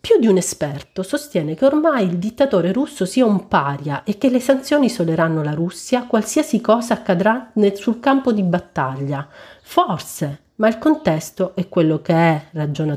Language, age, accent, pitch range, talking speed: Italian, 40-59, native, 155-200 Hz, 165 wpm